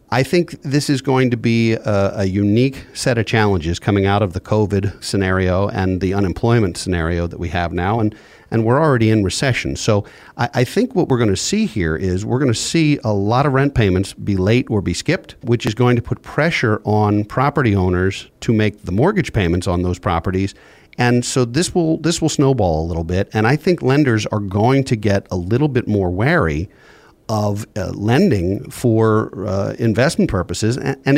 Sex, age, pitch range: male, 50-69, 95-125 Hz